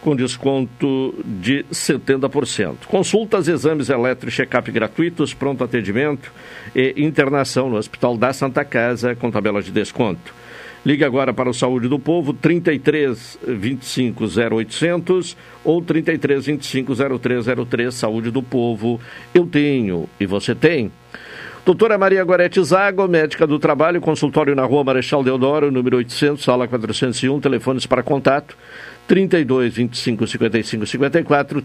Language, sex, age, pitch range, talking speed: Portuguese, male, 60-79, 120-150 Hz, 125 wpm